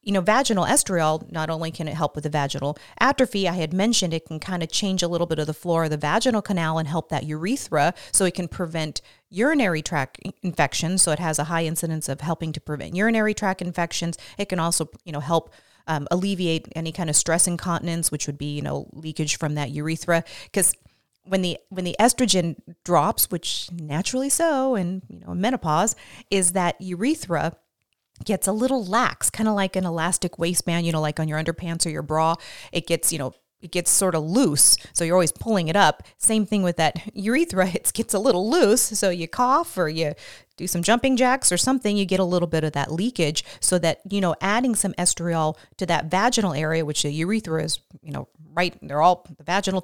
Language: English